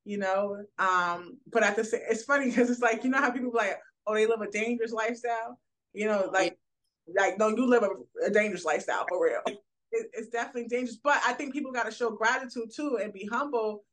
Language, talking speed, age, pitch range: English, 235 wpm, 20-39, 200-240 Hz